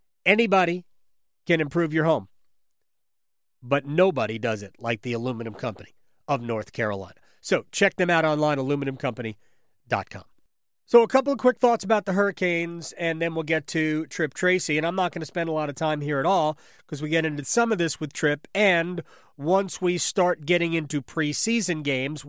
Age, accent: 40-59, American